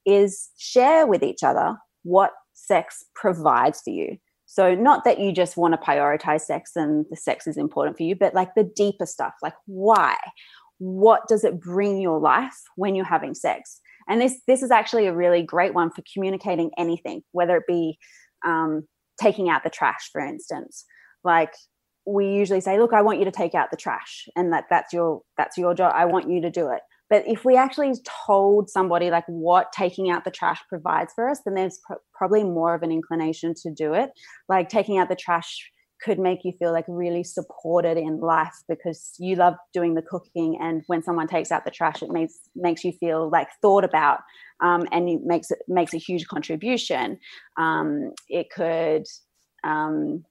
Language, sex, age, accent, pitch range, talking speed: English, female, 20-39, Australian, 165-200 Hz, 195 wpm